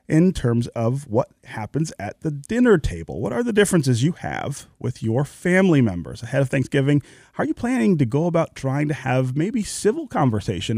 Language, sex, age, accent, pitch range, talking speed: English, male, 30-49, American, 110-155 Hz, 195 wpm